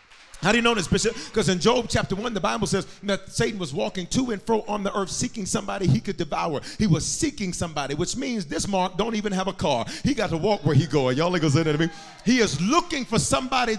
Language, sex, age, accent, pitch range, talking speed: English, male, 40-59, American, 205-330 Hz, 255 wpm